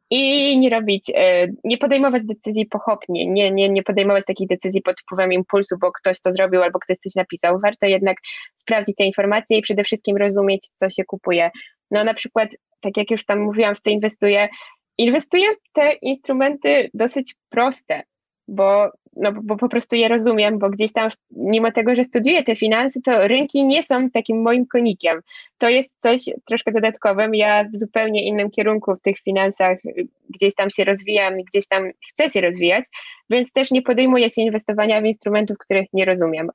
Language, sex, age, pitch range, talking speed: Polish, female, 10-29, 195-235 Hz, 180 wpm